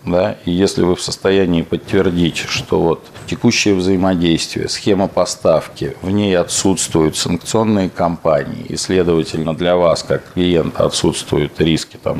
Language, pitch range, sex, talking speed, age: Russian, 85-110 Hz, male, 135 wpm, 40-59